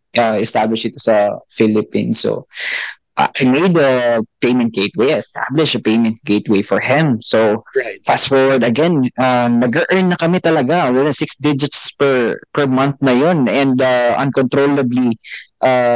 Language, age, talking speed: Filipino, 20-39, 145 wpm